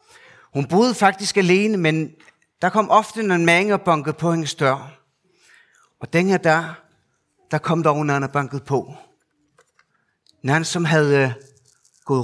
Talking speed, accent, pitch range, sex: 140 wpm, native, 140-195 Hz, male